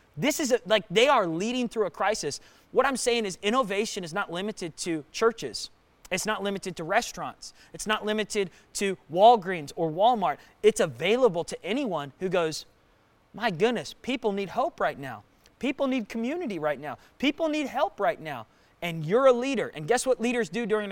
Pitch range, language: 180-230 Hz, English